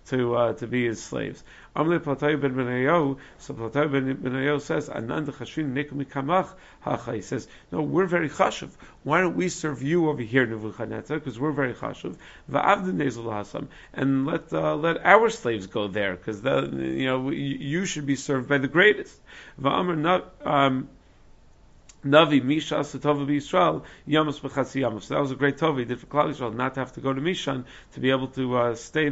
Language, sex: English, male